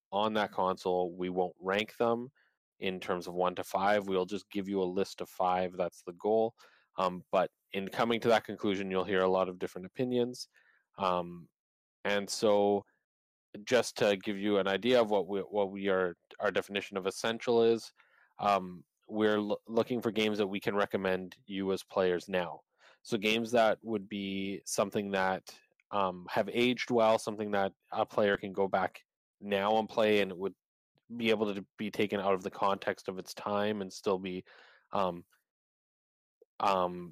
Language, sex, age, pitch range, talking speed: English, male, 20-39, 90-105 Hz, 180 wpm